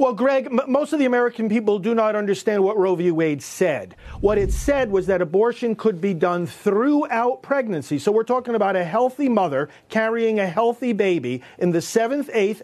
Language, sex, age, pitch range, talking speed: English, male, 40-59, 170-230 Hz, 195 wpm